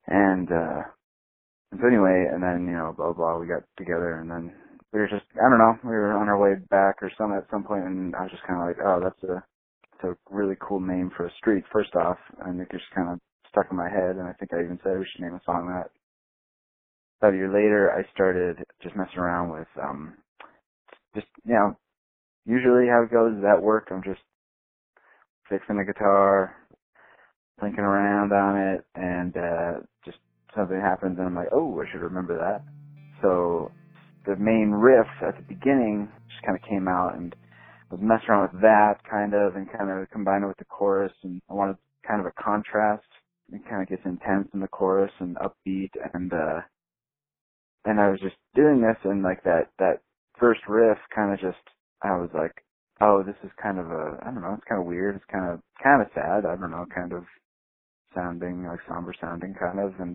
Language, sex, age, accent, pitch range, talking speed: English, male, 20-39, American, 90-105 Hz, 210 wpm